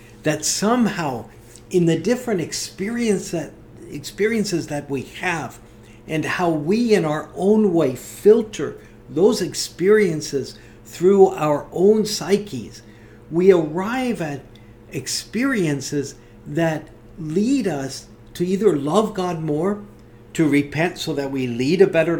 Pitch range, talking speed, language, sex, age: 125-195 Hz, 115 wpm, English, male, 50-69